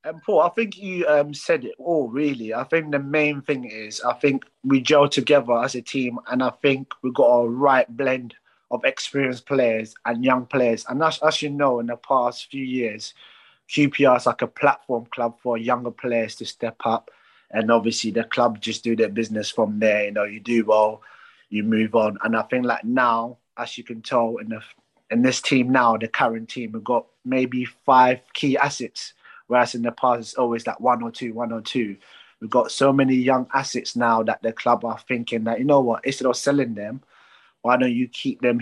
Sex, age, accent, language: male, 20-39, British, English